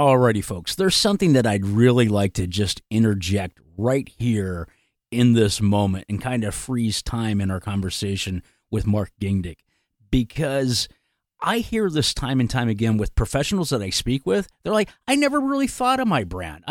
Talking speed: 180 wpm